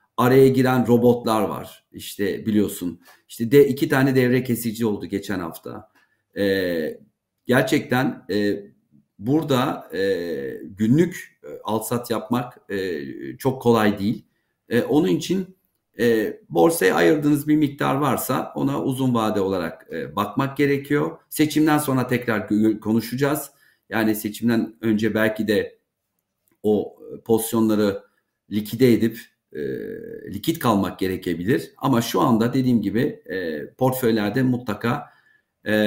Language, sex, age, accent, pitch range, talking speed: Turkish, male, 50-69, native, 110-140 Hz, 120 wpm